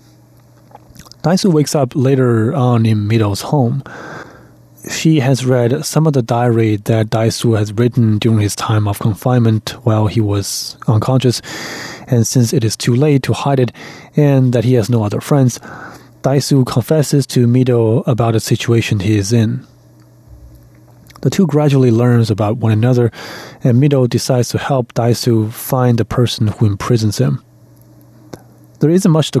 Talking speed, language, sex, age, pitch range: 155 wpm, German, male, 30-49, 110-130 Hz